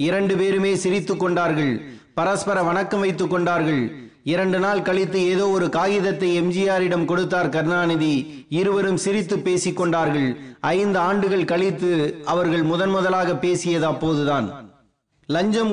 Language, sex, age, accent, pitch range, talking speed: Tamil, male, 30-49, native, 175-200 Hz, 100 wpm